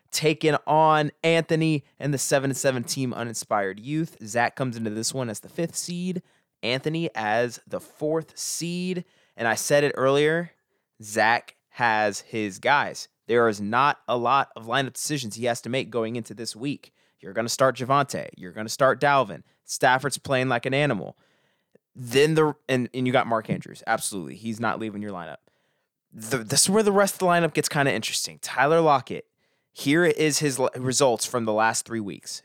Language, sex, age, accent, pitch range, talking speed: English, male, 20-39, American, 110-145 Hz, 180 wpm